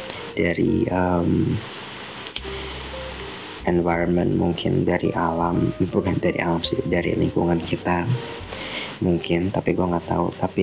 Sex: male